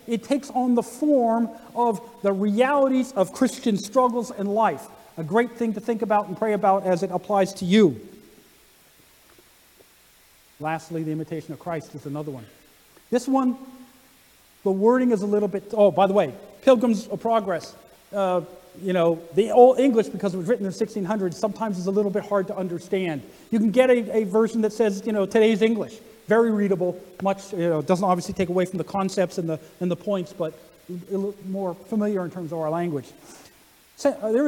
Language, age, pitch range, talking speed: English, 40-59, 175-225 Hz, 190 wpm